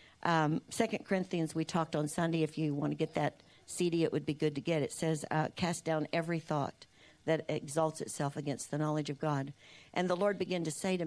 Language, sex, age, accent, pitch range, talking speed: English, female, 50-69, American, 150-180 Hz, 230 wpm